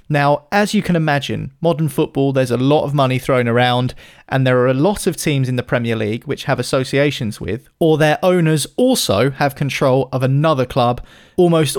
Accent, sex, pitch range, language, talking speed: British, male, 125-150 Hz, English, 200 wpm